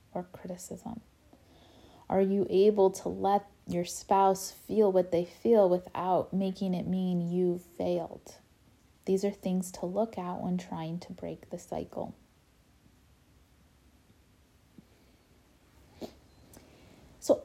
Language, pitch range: English, 180-205 Hz